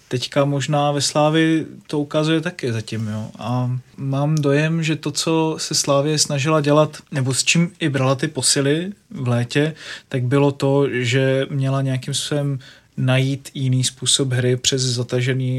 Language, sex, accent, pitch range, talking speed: Czech, male, native, 130-140 Hz, 160 wpm